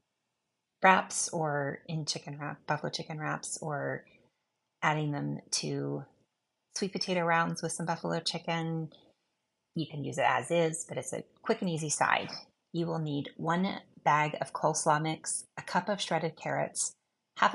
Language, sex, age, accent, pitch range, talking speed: English, female, 30-49, American, 145-170 Hz, 155 wpm